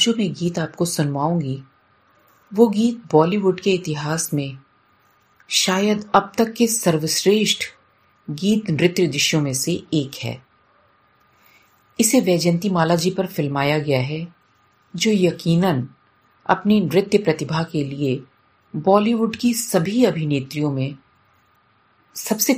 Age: 40-59